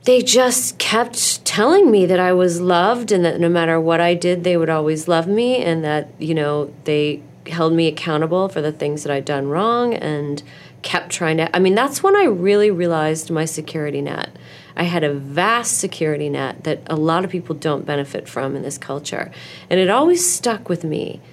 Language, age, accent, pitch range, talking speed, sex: English, 30-49, American, 150-195 Hz, 205 wpm, female